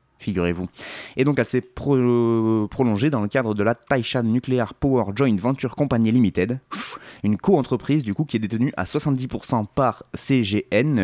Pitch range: 95-125 Hz